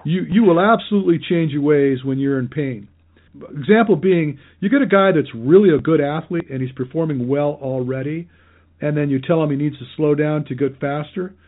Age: 50-69